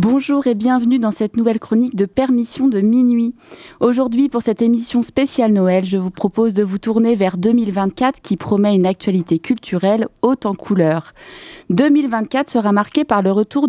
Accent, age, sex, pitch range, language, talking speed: French, 30-49, female, 185-235 Hz, French, 170 wpm